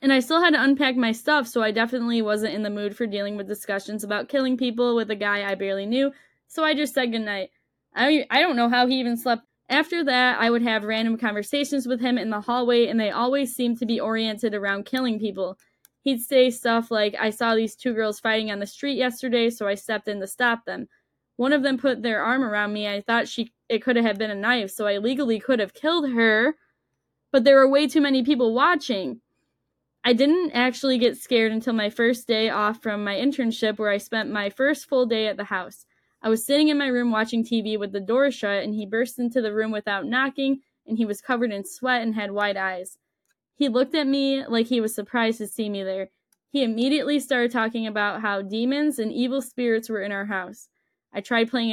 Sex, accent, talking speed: female, American, 230 wpm